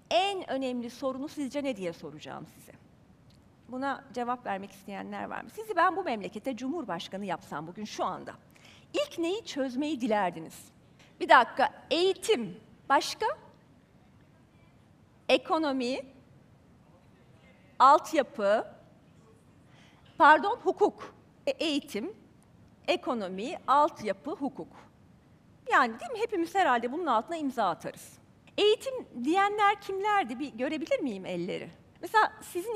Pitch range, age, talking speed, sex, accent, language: 210-355 Hz, 40-59, 105 wpm, female, native, Turkish